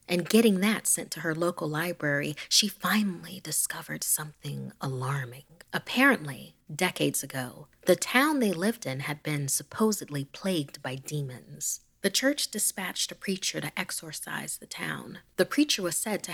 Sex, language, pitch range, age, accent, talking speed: female, English, 150-195 Hz, 30-49, American, 150 wpm